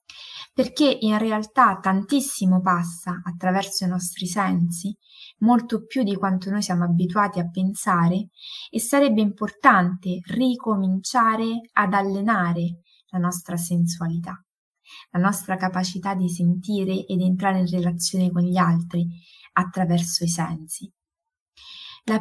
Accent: native